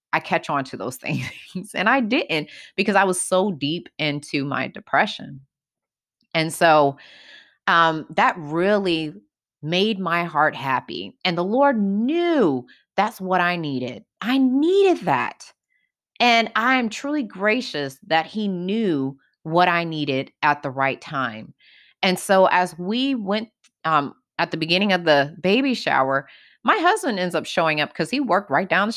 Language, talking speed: English, 155 wpm